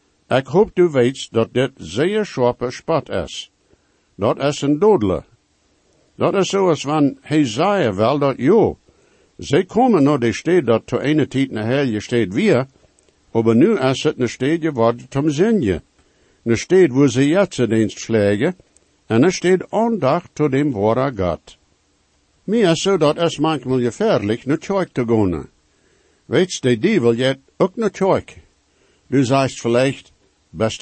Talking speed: 165 wpm